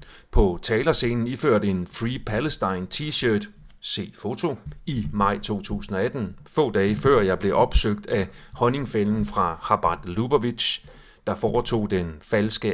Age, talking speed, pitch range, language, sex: 30-49, 130 wpm, 100-130 Hz, Danish, male